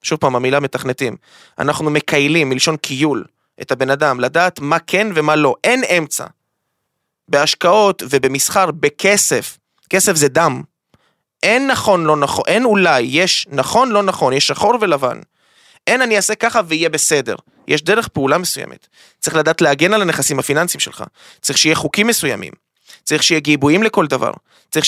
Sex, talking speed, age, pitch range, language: male, 155 wpm, 20-39, 145-190 Hz, Hebrew